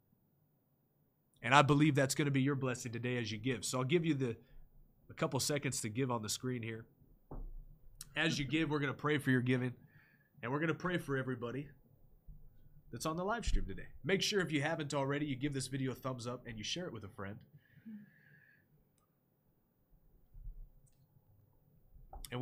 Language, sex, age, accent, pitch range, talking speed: English, male, 30-49, American, 125-150 Hz, 190 wpm